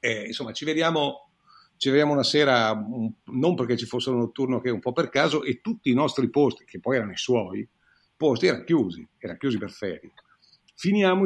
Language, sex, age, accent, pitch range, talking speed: Italian, male, 50-69, native, 120-150 Hz, 205 wpm